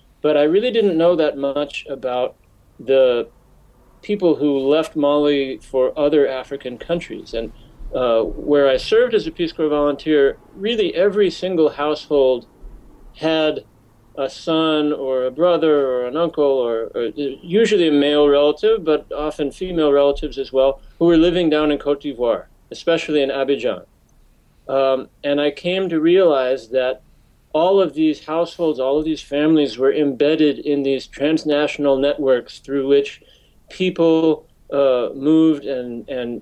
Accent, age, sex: American, 40-59, male